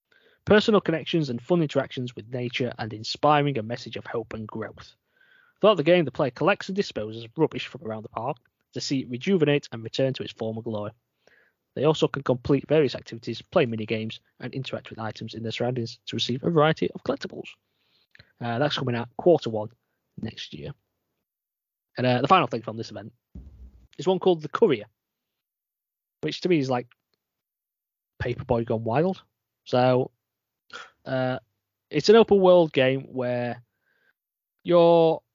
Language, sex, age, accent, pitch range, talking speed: English, male, 20-39, British, 115-155 Hz, 165 wpm